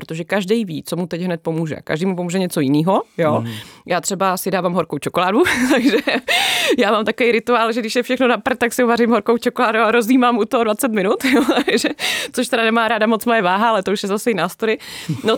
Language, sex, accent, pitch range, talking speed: Czech, female, native, 170-215 Hz, 225 wpm